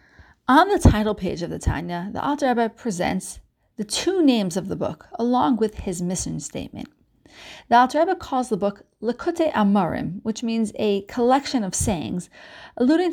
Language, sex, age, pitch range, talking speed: English, female, 40-59, 200-270 Hz, 160 wpm